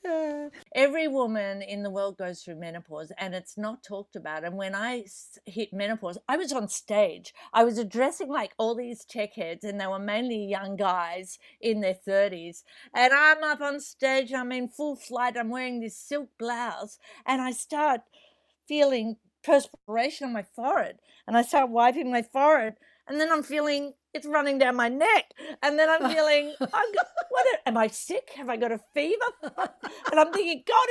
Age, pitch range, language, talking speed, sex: 50-69, 225-295 Hz, English, 180 wpm, female